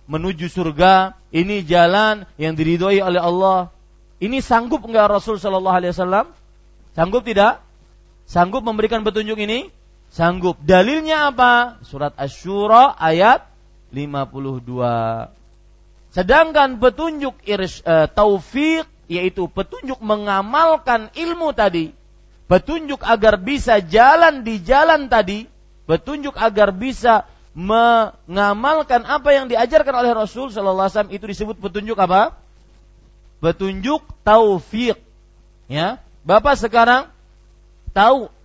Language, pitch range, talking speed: Malay, 175-245 Hz, 105 wpm